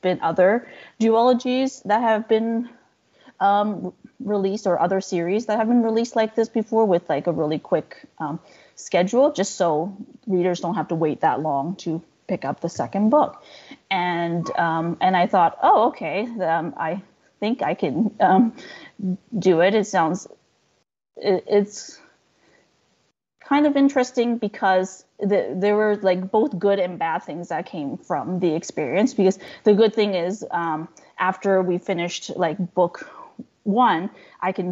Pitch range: 175-225 Hz